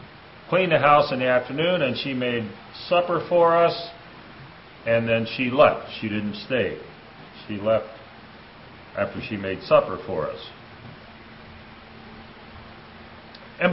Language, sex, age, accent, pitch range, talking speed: English, male, 40-59, American, 110-140 Hz, 120 wpm